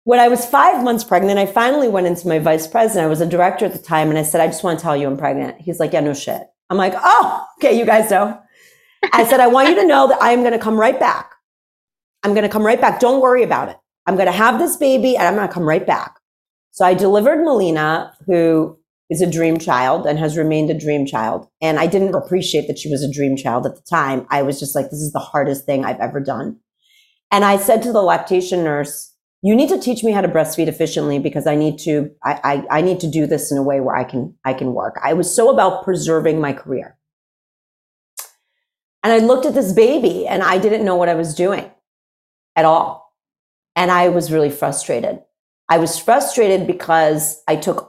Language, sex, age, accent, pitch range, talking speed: English, female, 40-59, American, 155-205 Hz, 240 wpm